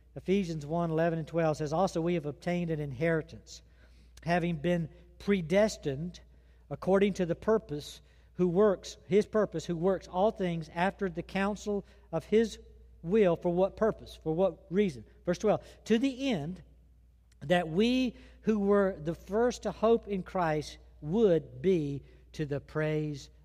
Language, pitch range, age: English, 140-195 Hz, 60-79